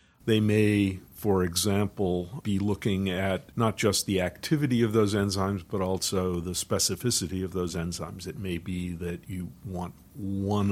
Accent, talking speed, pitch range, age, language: American, 155 wpm, 90-105 Hz, 50-69, English